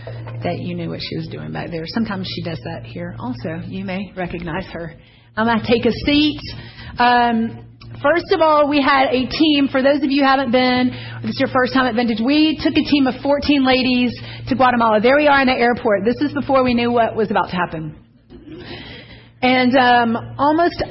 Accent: American